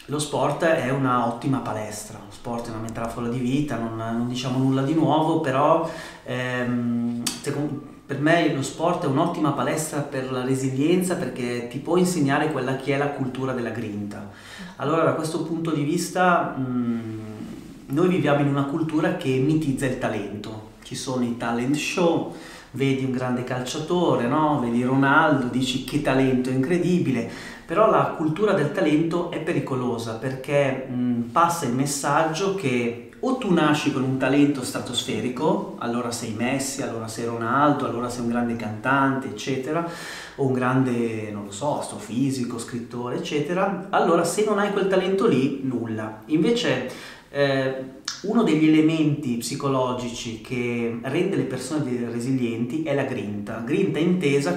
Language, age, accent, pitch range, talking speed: Italian, 30-49, native, 120-150 Hz, 155 wpm